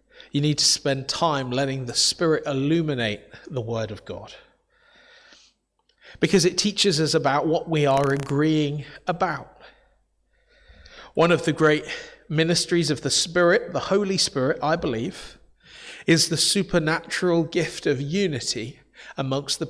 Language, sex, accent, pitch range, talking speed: English, male, British, 130-165 Hz, 135 wpm